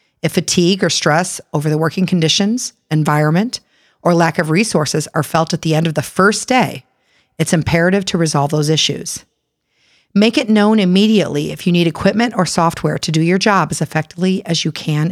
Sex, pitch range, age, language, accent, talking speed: female, 160-195 Hz, 40-59, English, American, 185 wpm